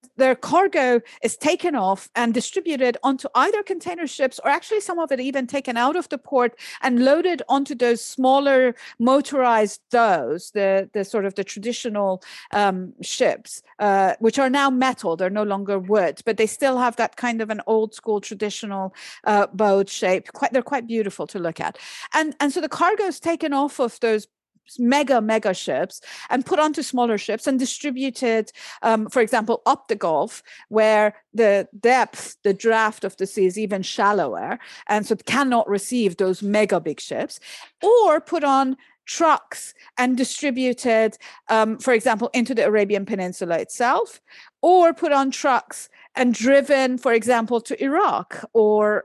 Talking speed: 170 wpm